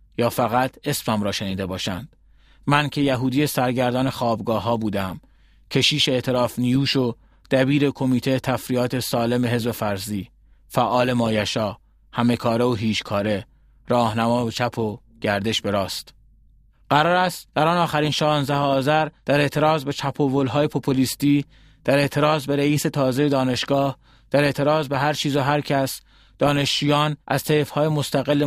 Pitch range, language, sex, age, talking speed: 115-140 Hz, Persian, male, 30-49, 140 wpm